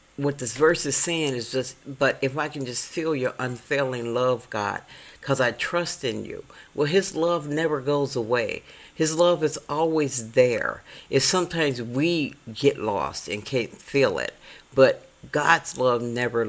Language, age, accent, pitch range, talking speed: English, 50-69, American, 115-155 Hz, 165 wpm